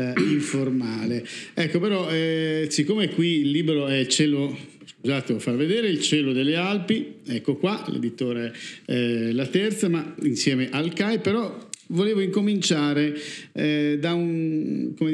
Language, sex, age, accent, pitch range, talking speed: Italian, male, 50-69, native, 130-155 Hz, 145 wpm